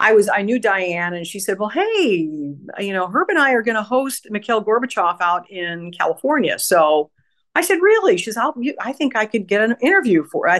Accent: American